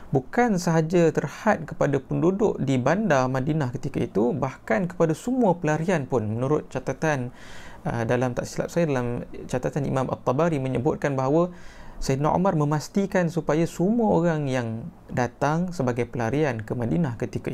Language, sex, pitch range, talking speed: Malay, male, 125-160 Hz, 135 wpm